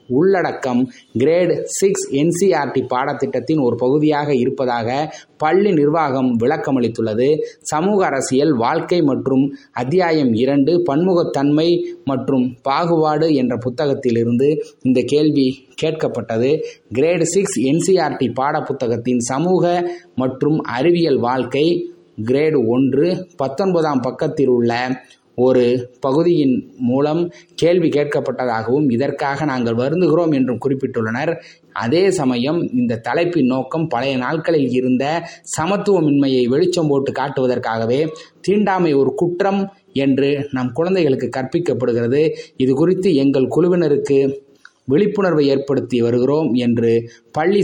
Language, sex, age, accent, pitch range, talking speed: Tamil, male, 20-39, native, 125-170 Hz, 95 wpm